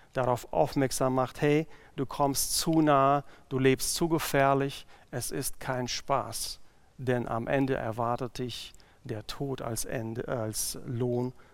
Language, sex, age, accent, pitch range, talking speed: German, male, 50-69, German, 120-140 Hz, 135 wpm